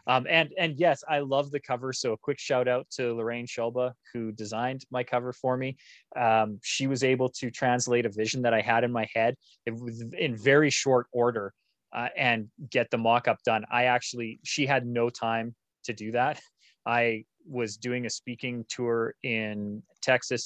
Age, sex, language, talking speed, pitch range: 20-39, male, English, 190 wpm, 110-130 Hz